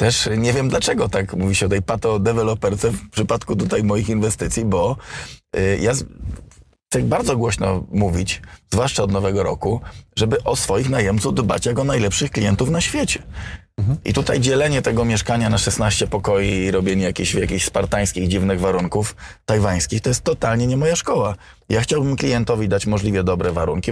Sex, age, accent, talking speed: male, 20-39, native, 170 wpm